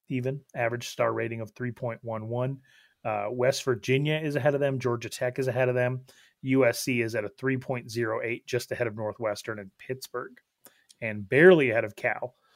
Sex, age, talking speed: male, 30-49, 160 wpm